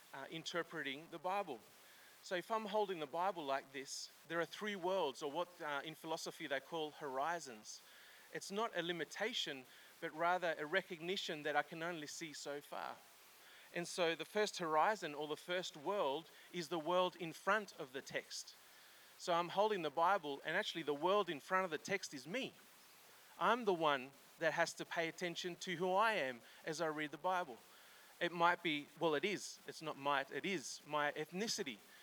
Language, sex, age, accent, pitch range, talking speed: English, male, 30-49, Australian, 150-180 Hz, 190 wpm